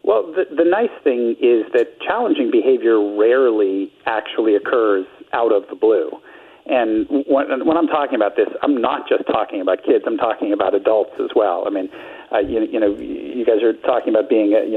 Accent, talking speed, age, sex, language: American, 200 wpm, 50-69, male, English